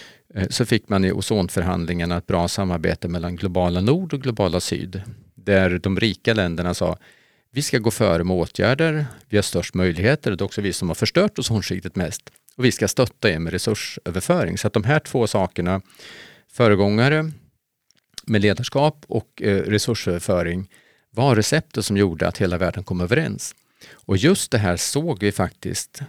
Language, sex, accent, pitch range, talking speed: Swedish, male, Norwegian, 90-120 Hz, 170 wpm